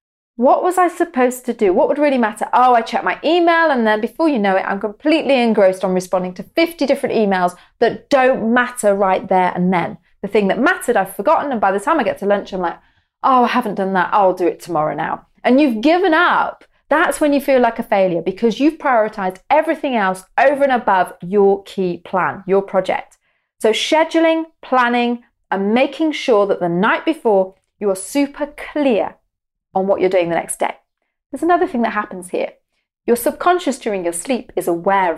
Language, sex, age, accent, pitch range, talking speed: English, female, 30-49, British, 200-290 Hz, 205 wpm